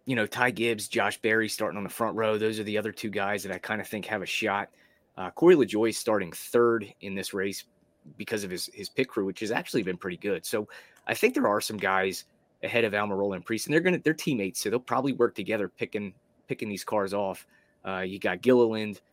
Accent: American